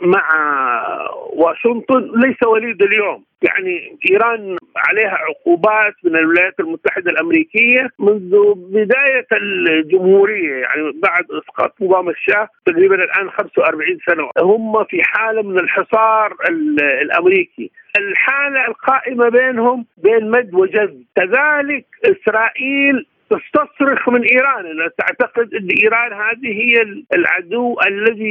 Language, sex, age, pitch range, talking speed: Arabic, male, 50-69, 210-330 Hz, 105 wpm